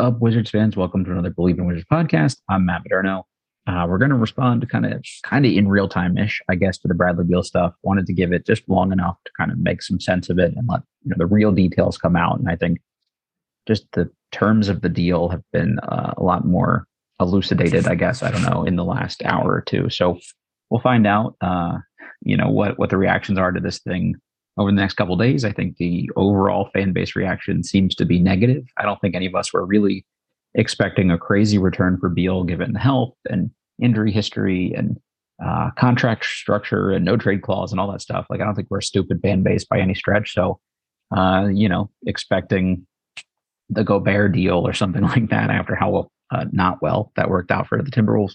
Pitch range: 90-110 Hz